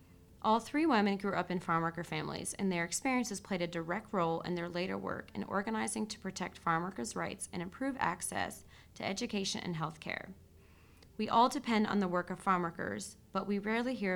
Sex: female